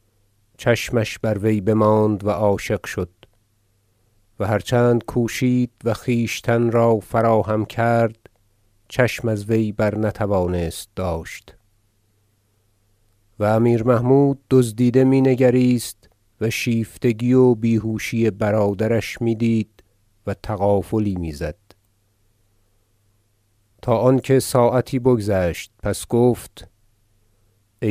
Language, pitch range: Persian, 105-125 Hz